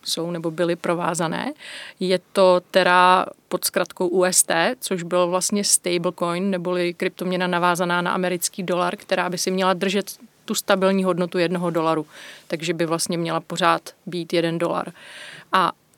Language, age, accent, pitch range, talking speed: Czech, 30-49, native, 175-190 Hz, 145 wpm